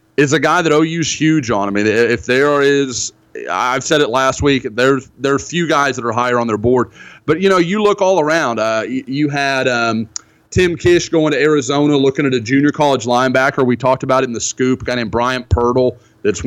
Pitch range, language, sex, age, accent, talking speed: 120-155 Hz, English, male, 30-49, American, 230 wpm